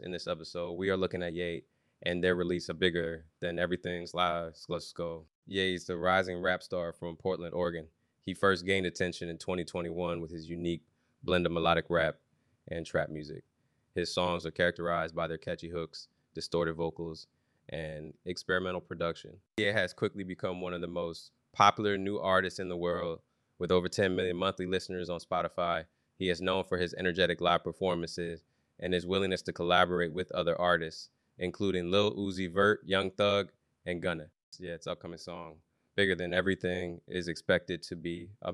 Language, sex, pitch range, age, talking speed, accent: English, male, 85-95 Hz, 20-39, 175 wpm, American